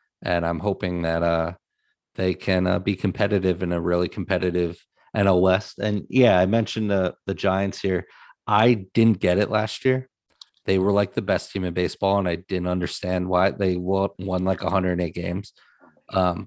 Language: English